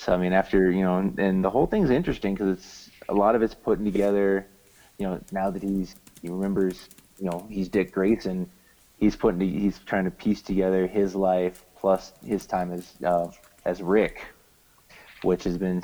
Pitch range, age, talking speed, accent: 90-100 Hz, 20-39, 190 wpm, American